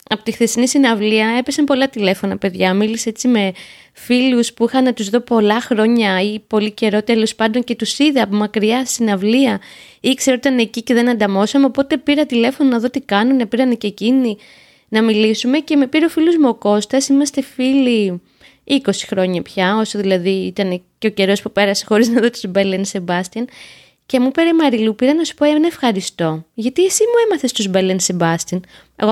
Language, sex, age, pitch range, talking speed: Greek, female, 20-39, 200-250 Hz, 200 wpm